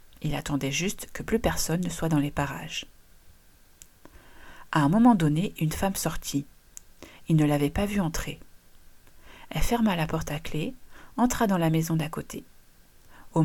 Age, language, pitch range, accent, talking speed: 40-59, French, 150-195 Hz, French, 165 wpm